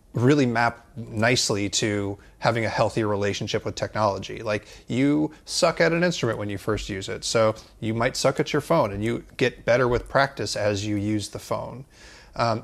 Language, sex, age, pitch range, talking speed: English, male, 30-49, 105-135 Hz, 190 wpm